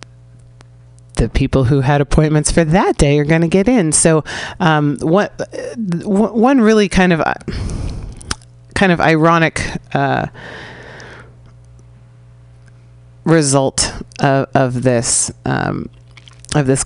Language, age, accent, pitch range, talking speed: English, 30-49, American, 125-165 Hz, 120 wpm